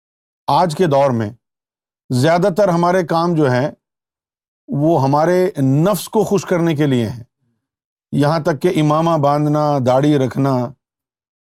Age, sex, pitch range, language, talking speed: 50-69, male, 125-175 Hz, Urdu, 130 wpm